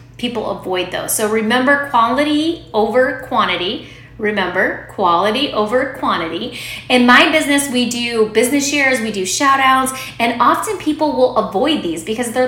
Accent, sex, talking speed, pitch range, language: American, female, 150 wpm, 220-295 Hz, English